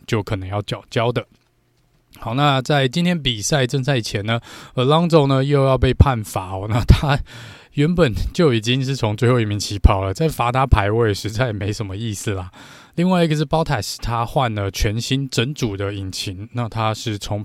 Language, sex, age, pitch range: Chinese, male, 20-39, 105-135 Hz